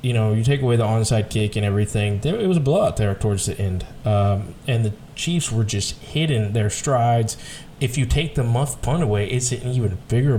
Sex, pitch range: male, 110-140 Hz